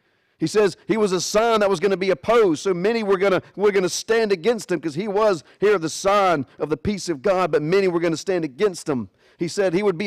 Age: 40-59